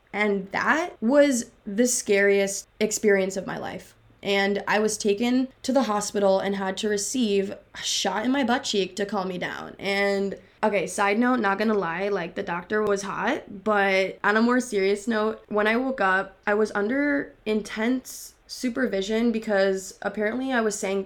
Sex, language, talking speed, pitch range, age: female, English, 175 wpm, 195-230 Hz, 20-39